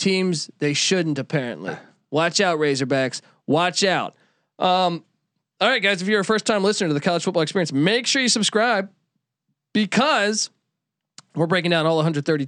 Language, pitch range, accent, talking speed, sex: English, 150-195 Hz, American, 165 wpm, male